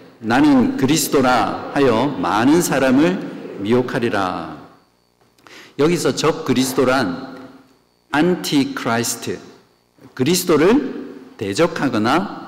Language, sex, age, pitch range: Korean, male, 50-69, 120-165 Hz